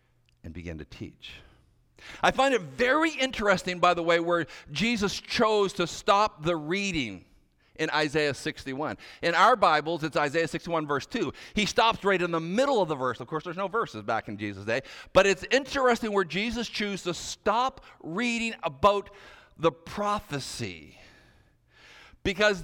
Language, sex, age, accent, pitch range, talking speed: English, male, 50-69, American, 135-205 Hz, 160 wpm